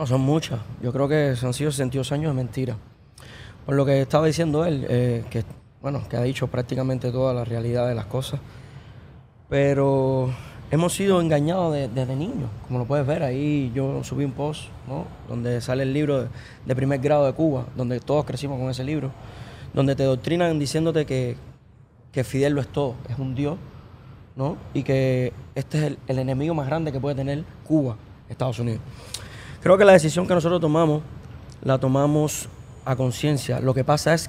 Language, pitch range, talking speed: English, 125-155 Hz, 190 wpm